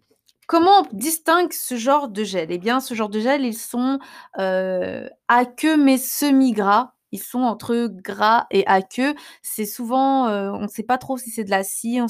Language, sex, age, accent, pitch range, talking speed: French, female, 20-39, French, 200-245 Hz, 195 wpm